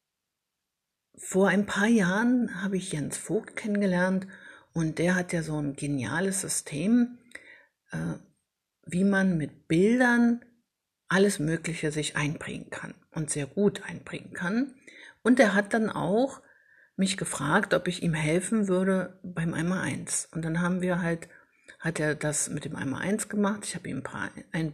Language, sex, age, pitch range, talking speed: German, female, 50-69, 155-205 Hz, 160 wpm